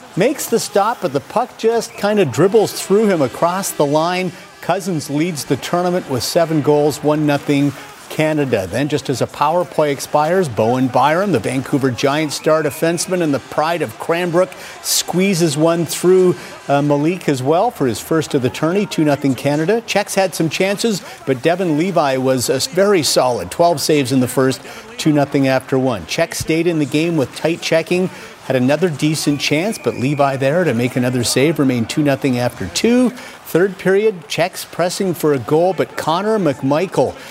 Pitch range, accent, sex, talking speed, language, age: 135-175 Hz, American, male, 180 wpm, English, 50-69